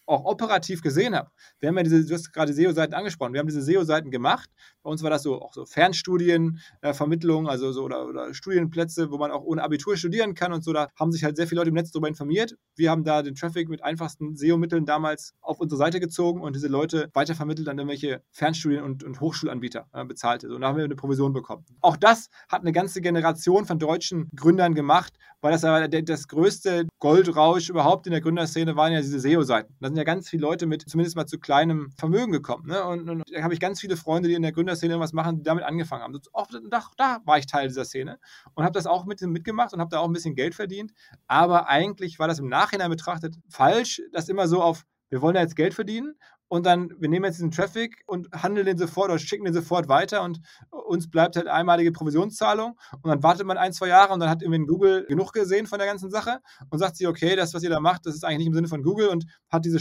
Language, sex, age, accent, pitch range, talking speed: German, male, 20-39, German, 155-180 Hz, 245 wpm